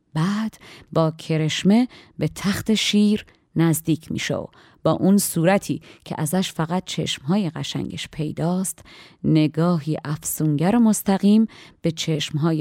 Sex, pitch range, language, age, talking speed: female, 155-175 Hz, Persian, 30-49, 115 wpm